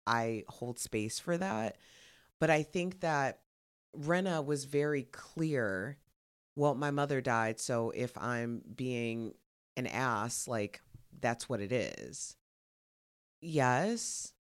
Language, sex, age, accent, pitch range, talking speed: English, female, 30-49, American, 115-145 Hz, 120 wpm